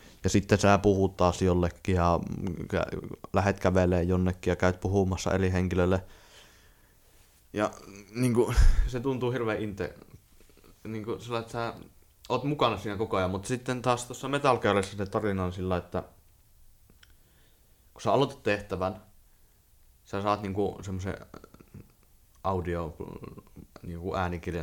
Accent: native